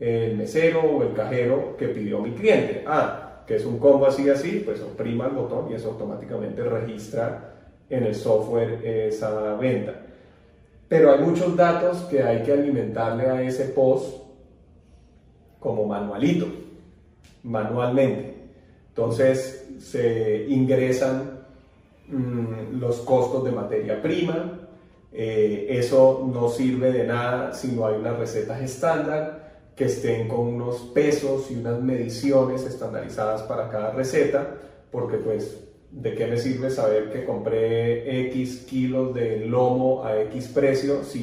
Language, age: Spanish, 30-49